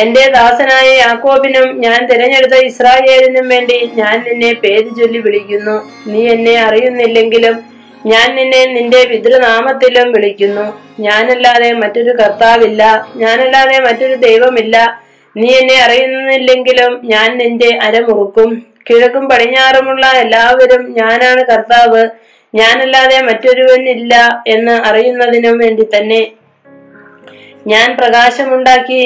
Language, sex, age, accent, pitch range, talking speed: Malayalam, female, 20-39, native, 225-255 Hz, 95 wpm